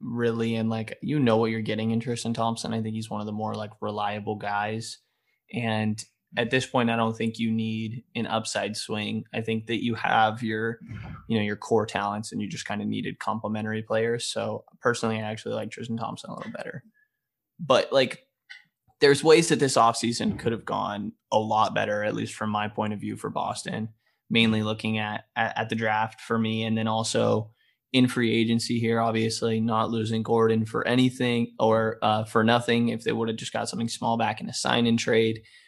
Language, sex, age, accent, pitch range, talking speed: English, male, 20-39, American, 110-120 Hz, 205 wpm